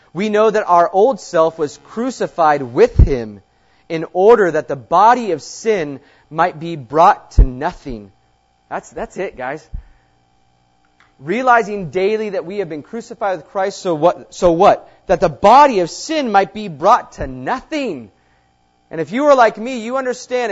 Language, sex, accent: English, male, American